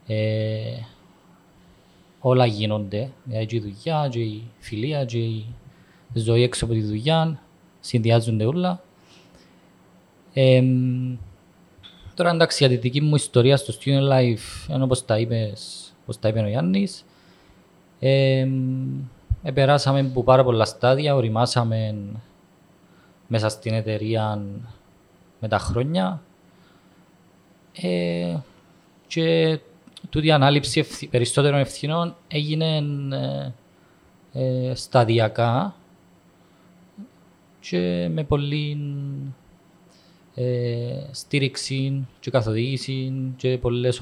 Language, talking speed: Greek, 80 wpm